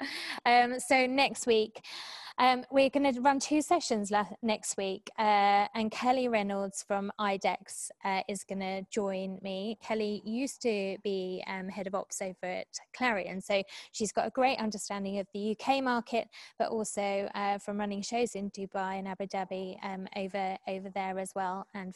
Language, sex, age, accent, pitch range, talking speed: English, female, 20-39, British, 195-225 Hz, 175 wpm